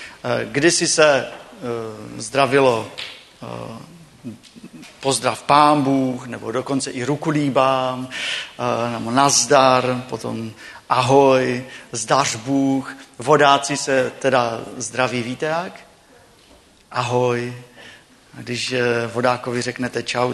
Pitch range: 125-150 Hz